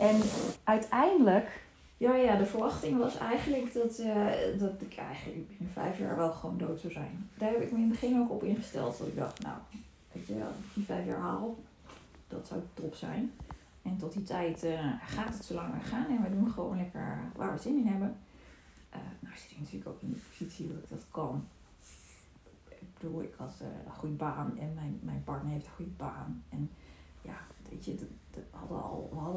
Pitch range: 165-225 Hz